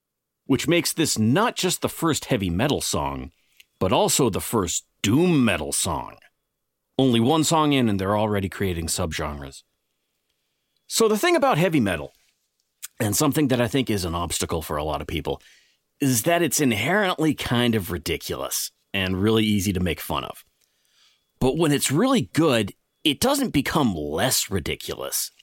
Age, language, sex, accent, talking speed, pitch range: 40-59, English, male, American, 165 wpm, 90-130 Hz